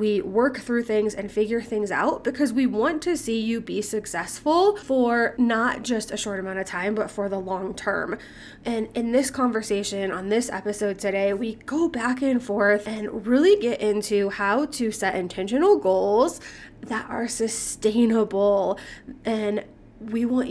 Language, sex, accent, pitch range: English, female, American, 210-250 Hz